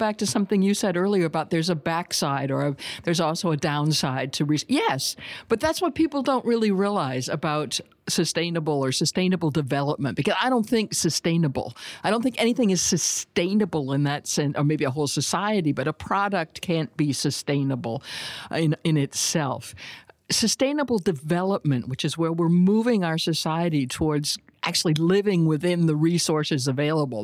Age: 60-79